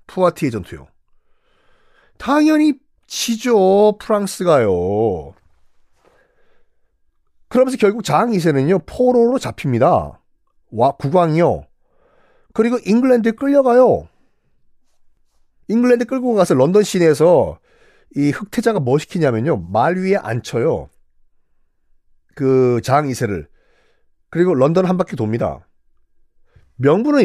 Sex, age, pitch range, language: male, 40-59, 125-205 Hz, Korean